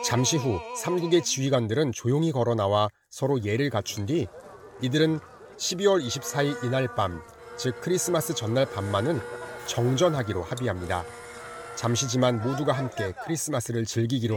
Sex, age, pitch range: male, 30-49, 110-145 Hz